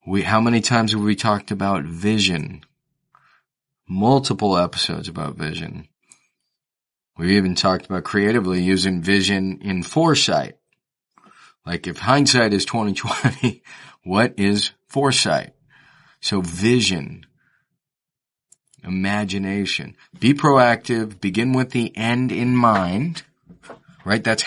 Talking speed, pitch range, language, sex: 110 wpm, 100-125 Hz, English, male